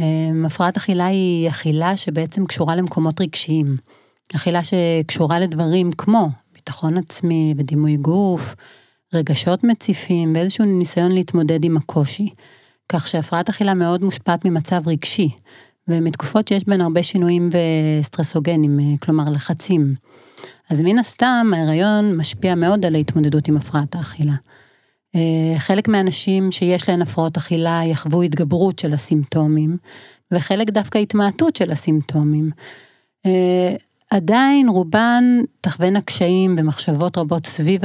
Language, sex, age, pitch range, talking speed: Hebrew, female, 30-49, 155-185 Hz, 115 wpm